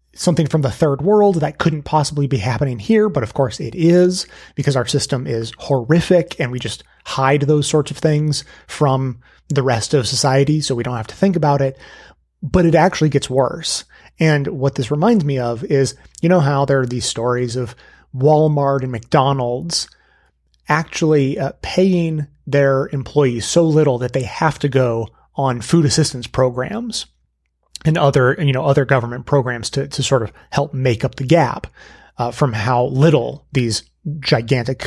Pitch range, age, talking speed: 130-160 Hz, 30-49, 175 wpm